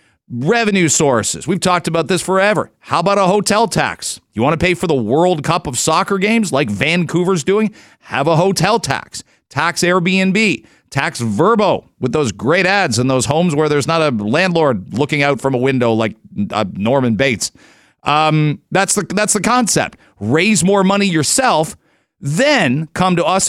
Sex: male